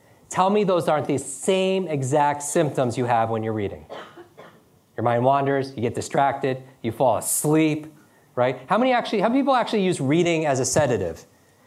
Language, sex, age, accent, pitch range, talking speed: English, male, 30-49, American, 130-170 Hz, 180 wpm